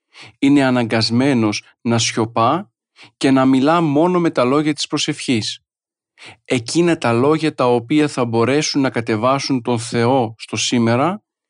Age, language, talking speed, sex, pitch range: 40-59, Greek, 135 wpm, male, 120-155 Hz